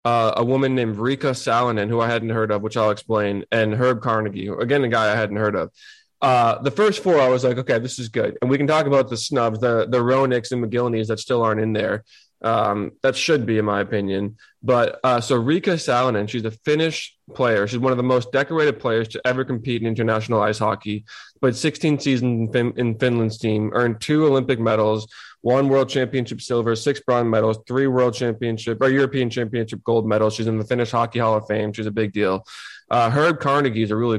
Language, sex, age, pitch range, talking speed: English, male, 20-39, 110-130 Hz, 225 wpm